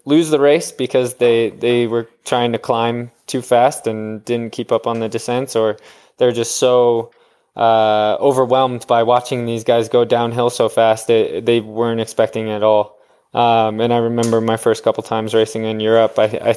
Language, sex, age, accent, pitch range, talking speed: English, male, 20-39, American, 105-120 Hz, 190 wpm